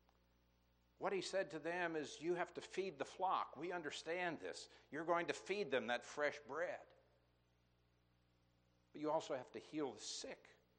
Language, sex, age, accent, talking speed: English, male, 60-79, American, 170 wpm